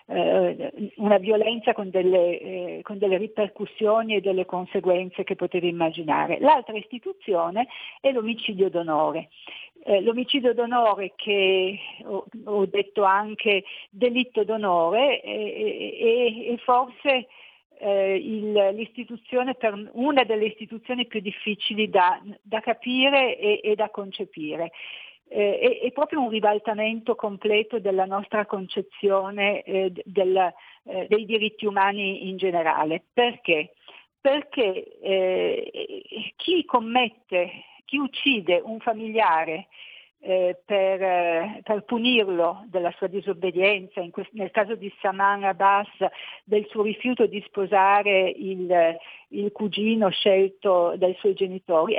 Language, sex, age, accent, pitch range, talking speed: Italian, female, 50-69, native, 190-230 Hz, 115 wpm